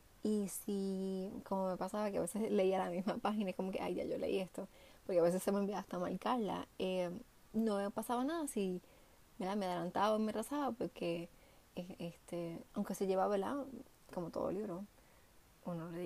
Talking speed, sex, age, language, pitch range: 185 wpm, female, 20-39, Spanish, 175-220 Hz